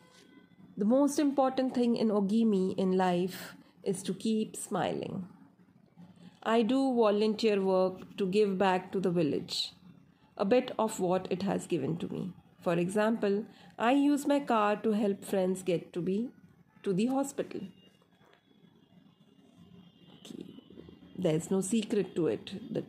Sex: female